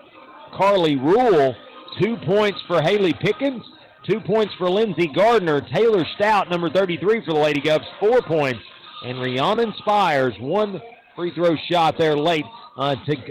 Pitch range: 150-215 Hz